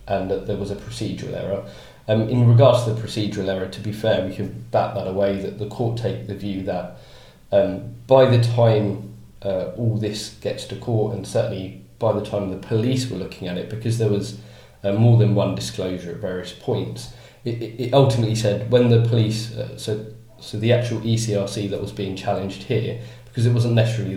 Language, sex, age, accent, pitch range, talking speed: English, male, 20-39, British, 105-120 Hz, 205 wpm